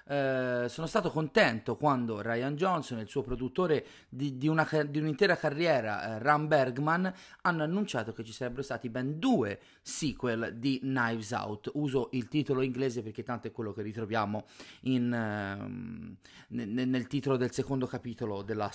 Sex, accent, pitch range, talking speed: male, native, 115-145 Hz, 165 wpm